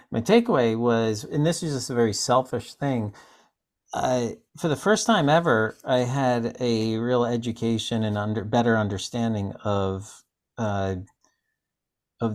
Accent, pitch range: American, 95-120 Hz